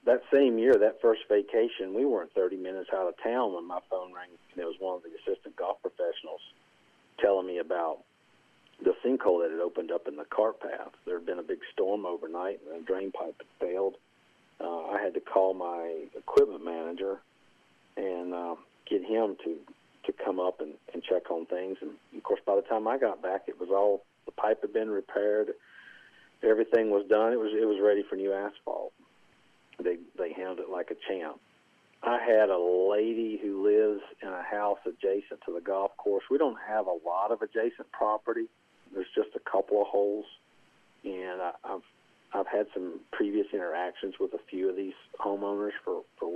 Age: 50-69